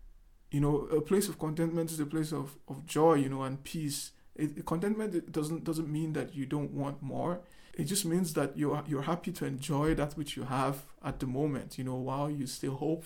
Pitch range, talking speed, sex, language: 135-160 Hz, 220 wpm, male, English